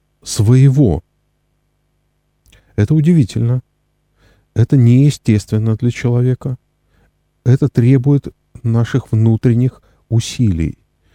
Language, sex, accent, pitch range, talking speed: Russian, male, native, 95-120 Hz, 65 wpm